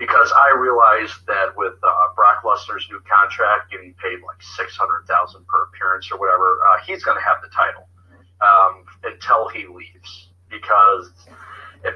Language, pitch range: English, 90-100 Hz